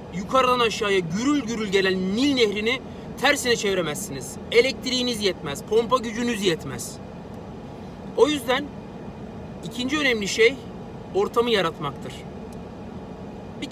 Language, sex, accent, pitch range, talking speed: Turkish, male, native, 205-265 Hz, 95 wpm